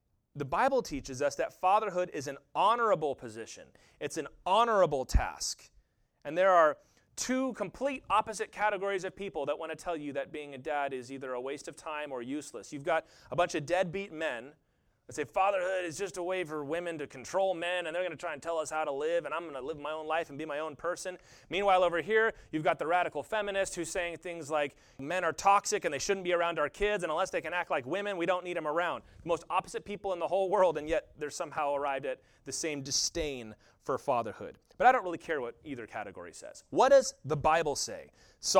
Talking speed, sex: 235 wpm, male